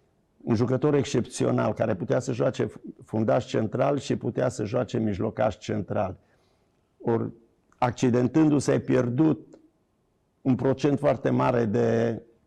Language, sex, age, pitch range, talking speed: Romanian, male, 50-69, 115-135 Hz, 115 wpm